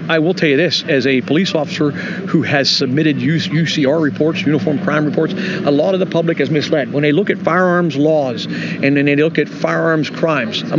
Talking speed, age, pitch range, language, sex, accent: 210 wpm, 50-69, 140-175 Hz, English, male, American